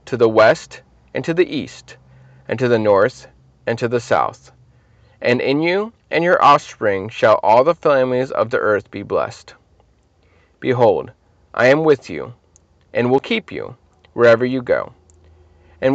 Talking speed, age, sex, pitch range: 160 wpm, 30-49, male, 115-180 Hz